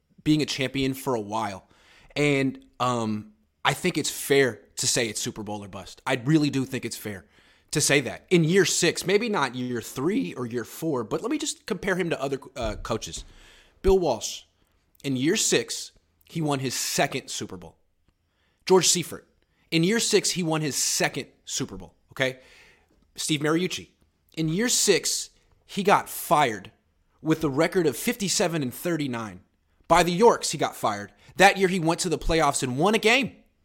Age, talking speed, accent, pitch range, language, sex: 30-49, 180 wpm, American, 120-170 Hz, English, male